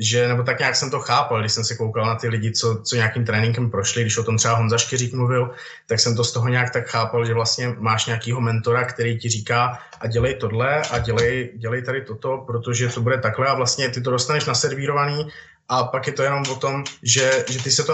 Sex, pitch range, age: male, 120-130 Hz, 20-39